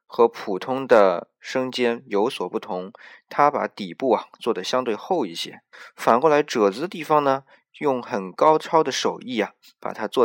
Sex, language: male, Chinese